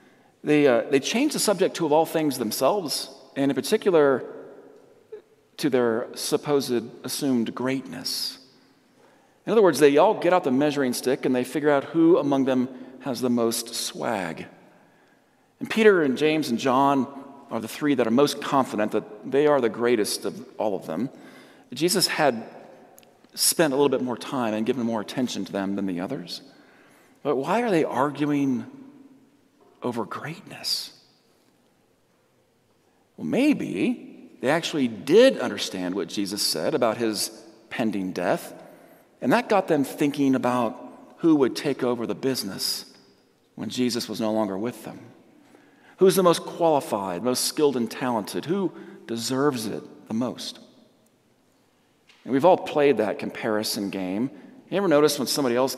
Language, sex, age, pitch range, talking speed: English, male, 40-59, 115-155 Hz, 155 wpm